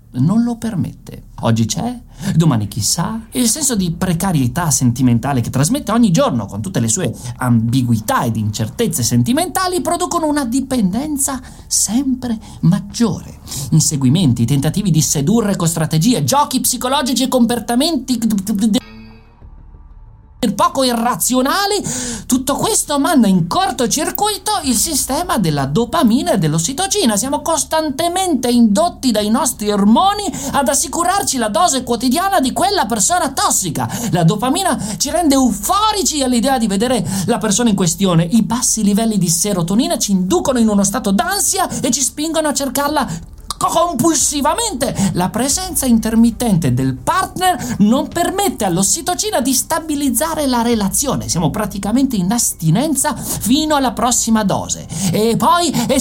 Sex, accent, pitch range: male, native, 185-290 Hz